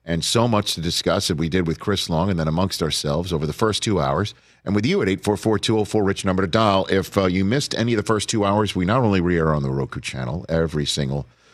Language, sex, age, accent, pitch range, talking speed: English, male, 50-69, American, 85-110 Hz, 280 wpm